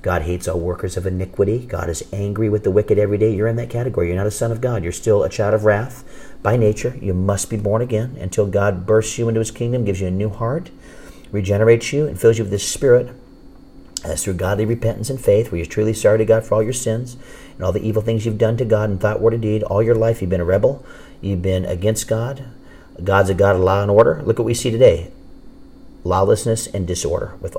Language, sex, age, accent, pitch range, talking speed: English, male, 40-59, American, 90-110 Hz, 250 wpm